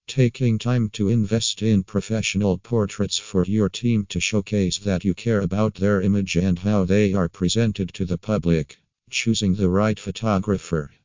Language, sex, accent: English, male, American